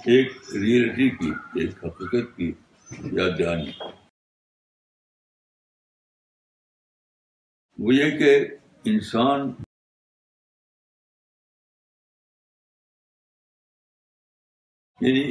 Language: Urdu